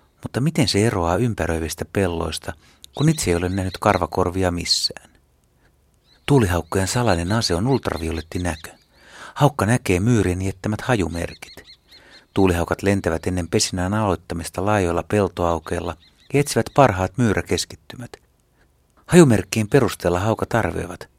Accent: native